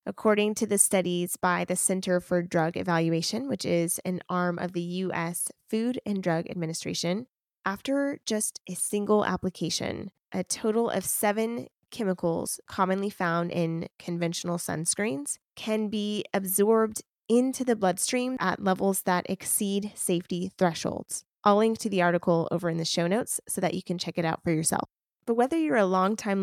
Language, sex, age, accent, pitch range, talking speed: English, female, 20-39, American, 180-215 Hz, 165 wpm